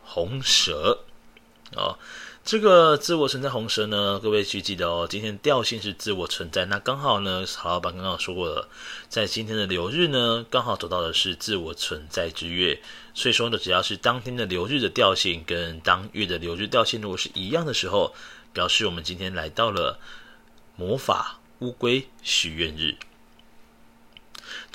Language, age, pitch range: Chinese, 30-49, 90-125 Hz